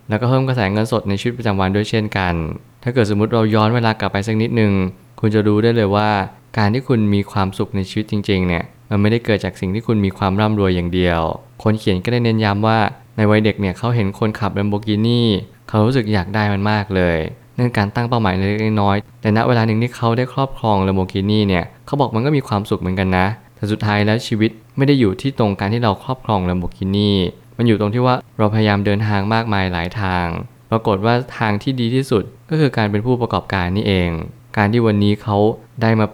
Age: 20-39